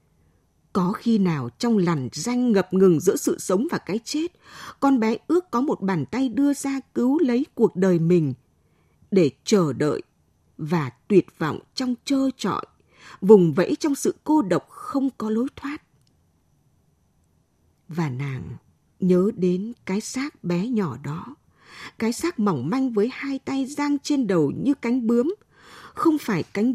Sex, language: female, Vietnamese